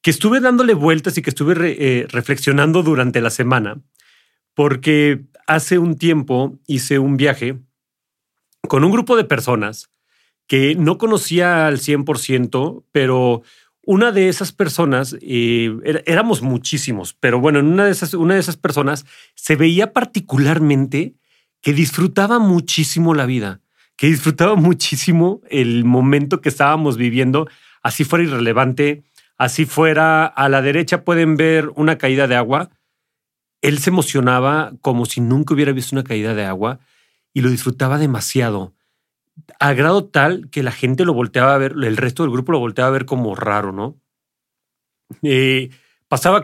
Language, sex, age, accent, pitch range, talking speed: Spanish, male, 40-59, Mexican, 125-160 Hz, 150 wpm